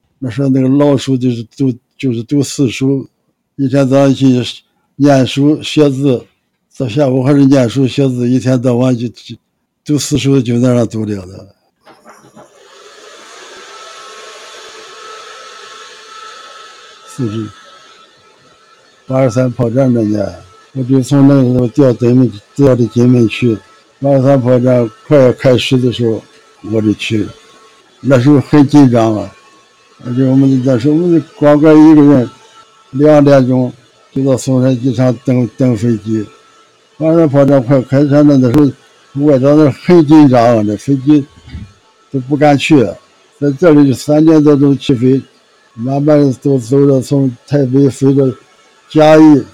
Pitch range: 125-145 Hz